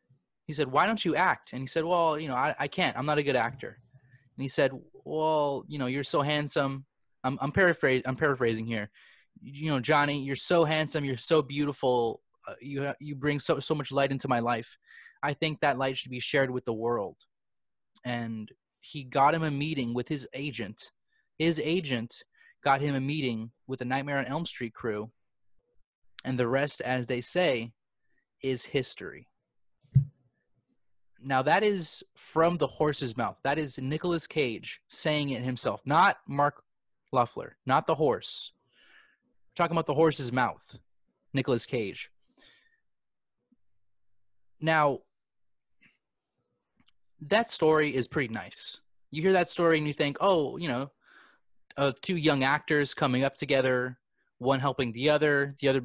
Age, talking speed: 20-39, 165 wpm